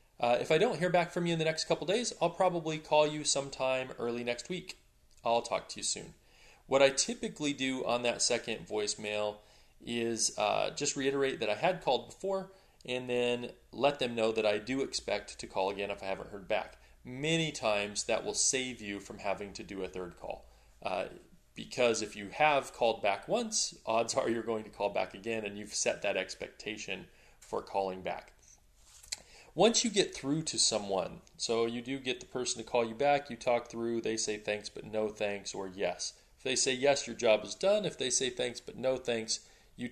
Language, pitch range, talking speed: English, 105-135 Hz, 210 wpm